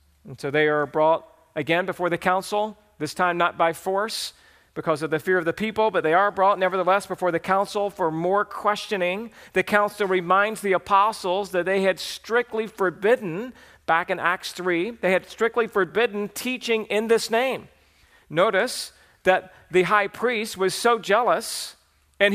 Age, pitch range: 40-59, 175-225 Hz